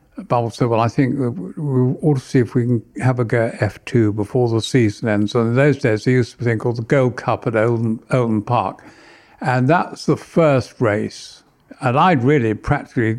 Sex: male